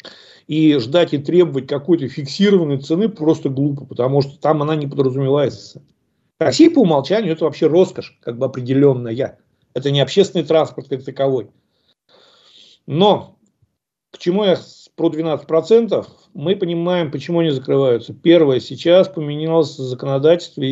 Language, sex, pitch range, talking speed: Russian, male, 135-170 Hz, 130 wpm